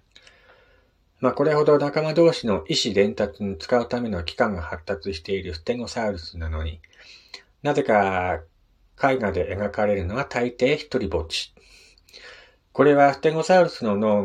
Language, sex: Japanese, male